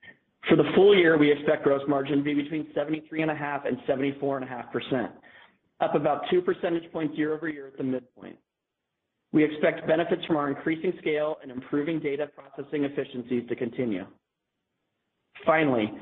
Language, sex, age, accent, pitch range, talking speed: English, male, 40-59, American, 130-155 Hz, 185 wpm